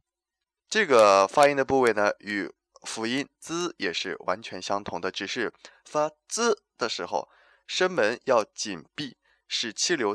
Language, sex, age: Chinese, male, 20-39